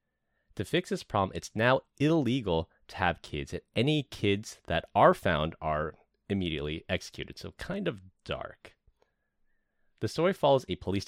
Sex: male